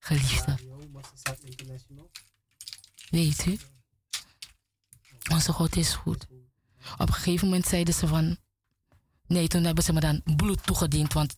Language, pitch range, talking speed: Dutch, 110-170 Hz, 120 wpm